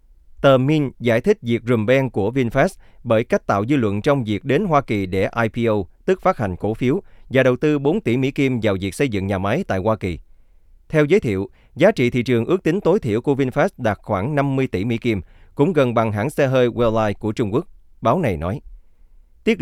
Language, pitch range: Vietnamese, 100-135 Hz